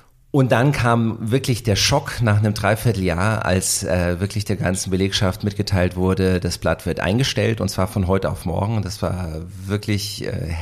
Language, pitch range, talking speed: German, 95-110 Hz, 175 wpm